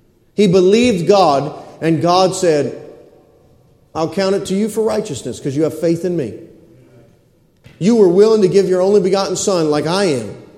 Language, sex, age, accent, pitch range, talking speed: English, male, 40-59, American, 160-215 Hz, 175 wpm